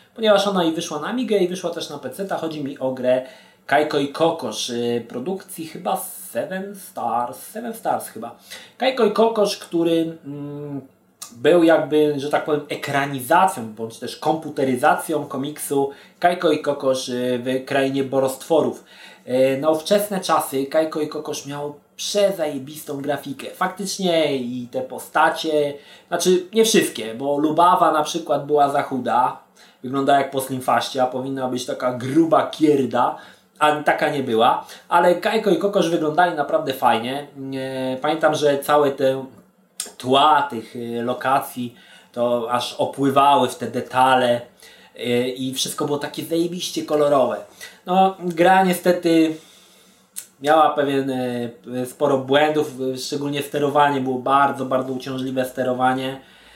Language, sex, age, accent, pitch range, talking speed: Polish, male, 30-49, native, 130-165 Hz, 130 wpm